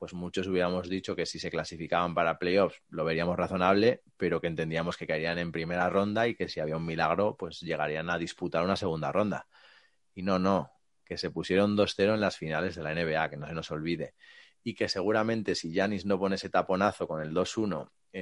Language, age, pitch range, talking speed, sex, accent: Spanish, 30-49, 90-120 Hz, 210 wpm, male, Spanish